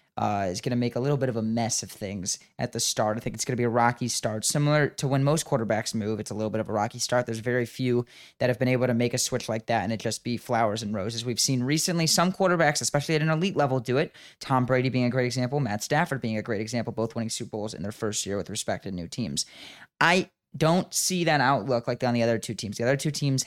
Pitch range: 115-150 Hz